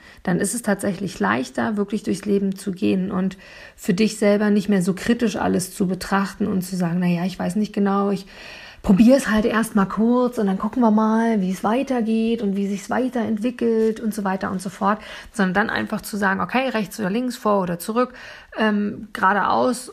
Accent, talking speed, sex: German, 210 wpm, female